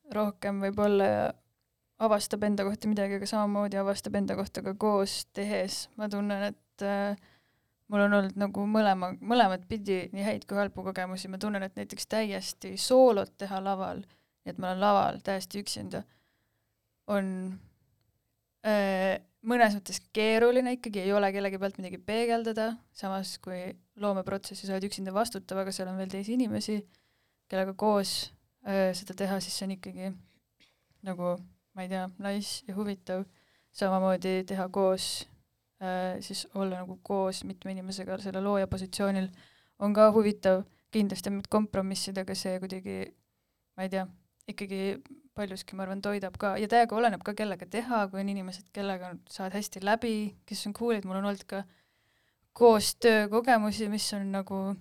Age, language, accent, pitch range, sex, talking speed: 20-39, English, Finnish, 190-210 Hz, female, 150 wpm